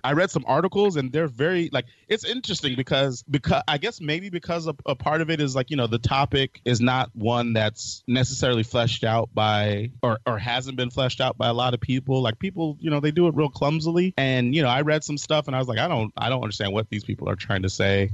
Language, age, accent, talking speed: English, 30-49, American, 260 wpm